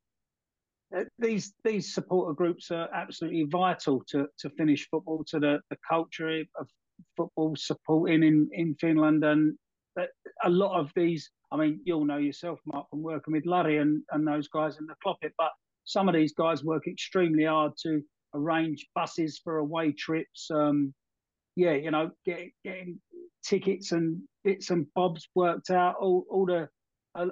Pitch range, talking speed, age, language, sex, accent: 155-180 Hz, 170 wpm, 40-59, English, male, British